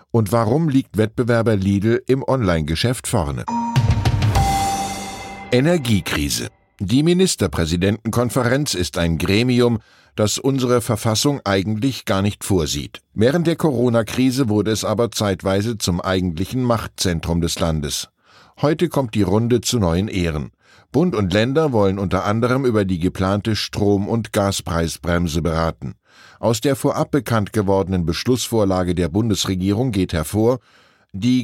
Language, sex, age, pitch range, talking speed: German, male, 10-29, 90-120 Hz, 120 wpm